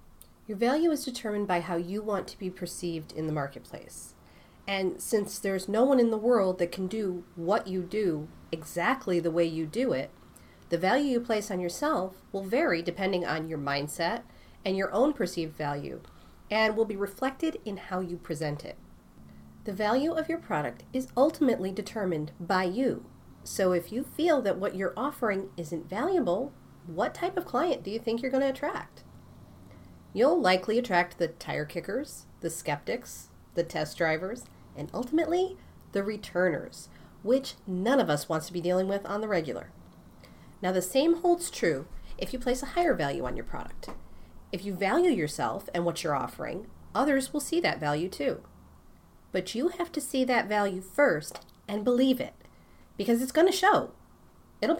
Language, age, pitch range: English, 40-59, 170-255 Hz